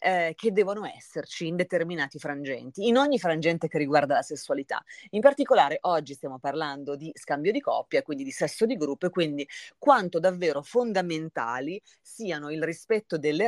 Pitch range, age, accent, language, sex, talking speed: 150-195 Hz, 30-49, native, Italian, female, 160 wpm